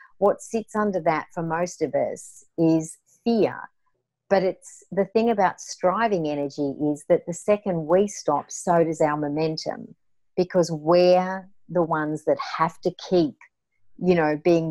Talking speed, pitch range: 155 wpm, 155-185 Hz